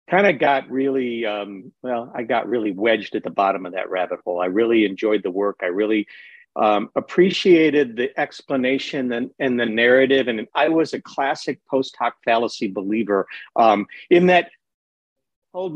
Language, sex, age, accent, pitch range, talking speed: English, male, 50-69, American, 110-145 Hz, 170 wpm